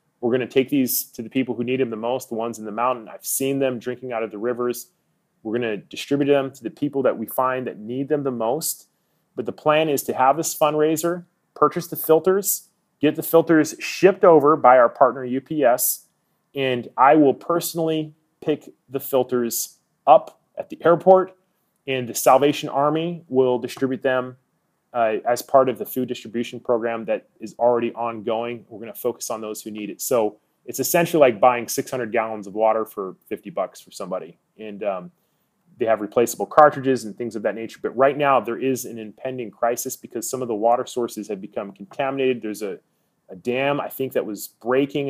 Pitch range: 115-145 Hz